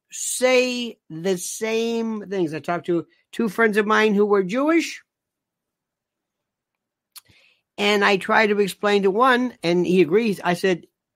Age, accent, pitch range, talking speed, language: 50-69, American, 150-215 Hz, 140 wpm, English